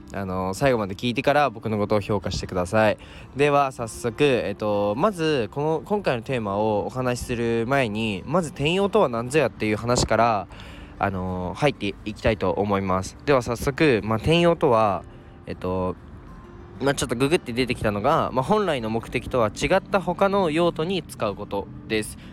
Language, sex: Japanese, male